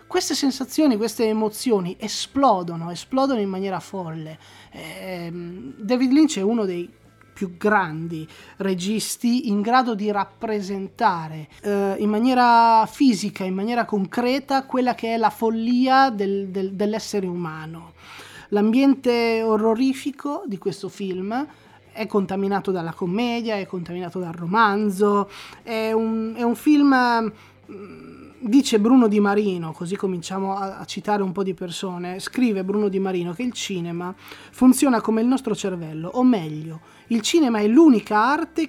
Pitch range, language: 190-245 Hz, Italian